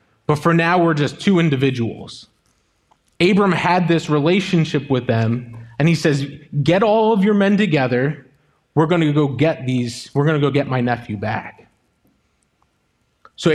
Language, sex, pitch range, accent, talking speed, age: English, male, 130-180 Hz, American, 165 wpm, 20-39